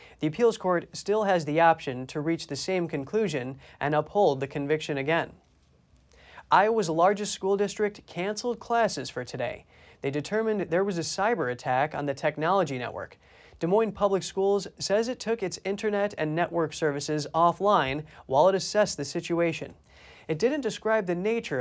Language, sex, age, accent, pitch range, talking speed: English, male, 30-49, American, 145-195 Hz, 165 wpm